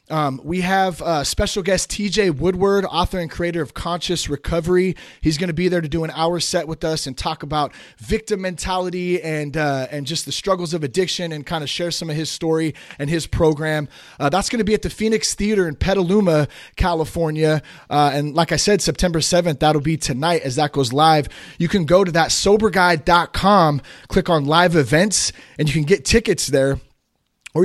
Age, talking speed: 30-49, 200 wpm